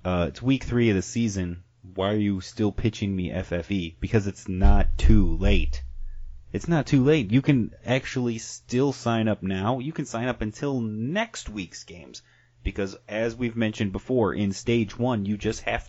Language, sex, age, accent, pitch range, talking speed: English, male, 30-49, American, 95-120 Hz, 185 wpm